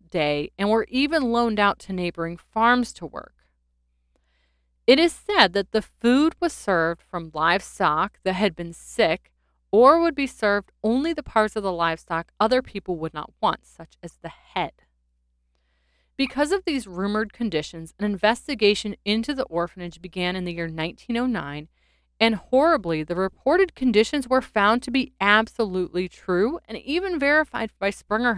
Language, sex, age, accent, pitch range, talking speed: English, female, 30-49, American, 160-235 Hz, 160 wpm